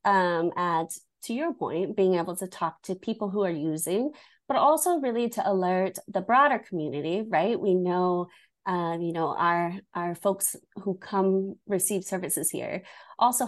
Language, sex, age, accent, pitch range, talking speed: English, female, 30-49, American, 175-210 Hz, 165 wpm